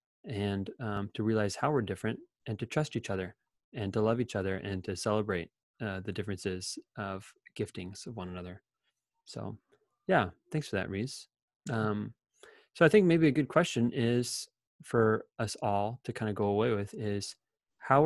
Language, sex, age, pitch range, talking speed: English, male, 20-39, 100-120 Hz, 175 wpm